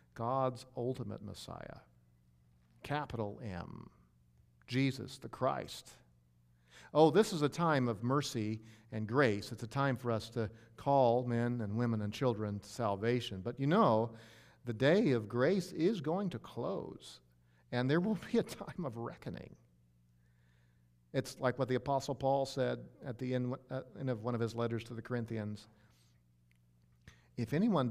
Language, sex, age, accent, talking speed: English, male, 50-69, American, 150 wpm